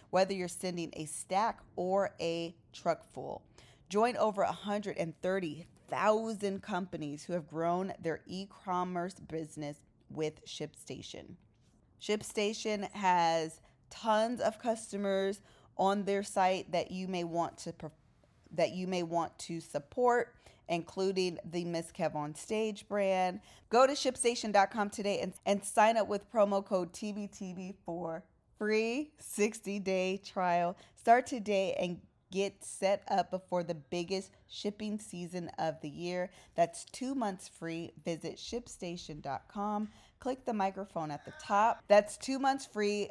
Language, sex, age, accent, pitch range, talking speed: English, female, 20-39, American, 165-205 Hz, 130 wpm